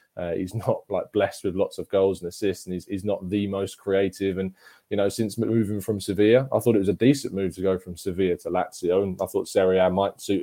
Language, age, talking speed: English, 20-39, 260 wpm